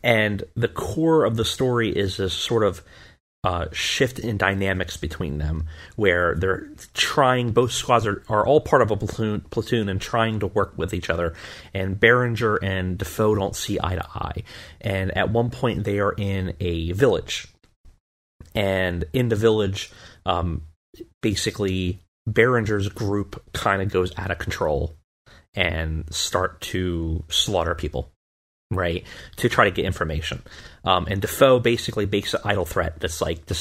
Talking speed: 160 wpm